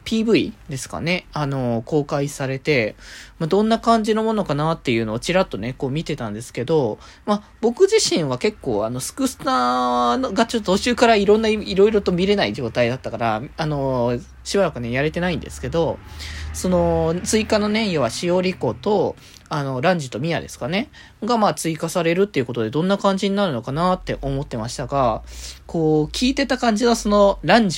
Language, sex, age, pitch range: Japanese, male, 20-39, 135-205 Hz